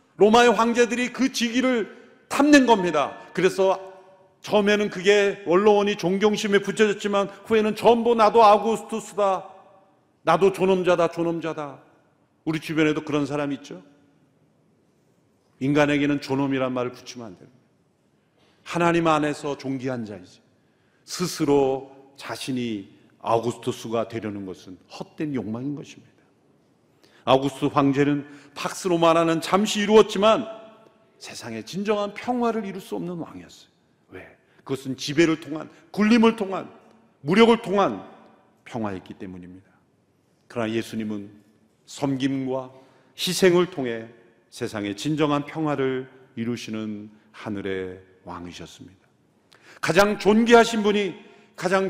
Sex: male